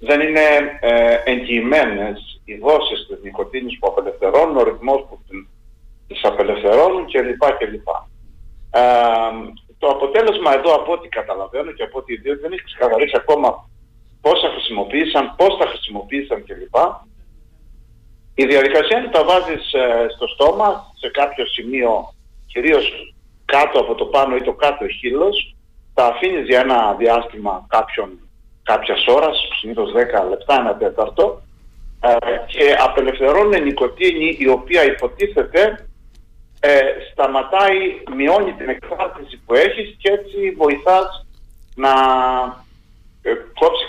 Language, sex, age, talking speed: Greek, male, 50-69, 125 wpm